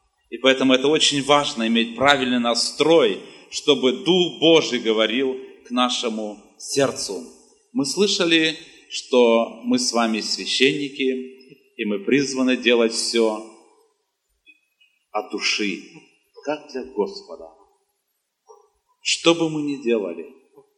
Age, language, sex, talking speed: 30-49, Russian, male, 105 wpm